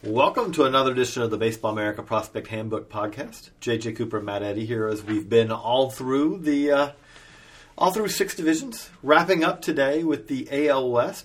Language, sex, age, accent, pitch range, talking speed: English, male, 40-59, American, 115-145 Hz, 170 wpm